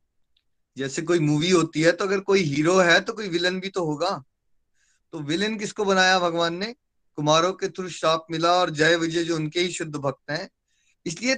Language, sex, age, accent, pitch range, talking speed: Hindi, male, 30-49, native, 145-190 Hz, 195 wpm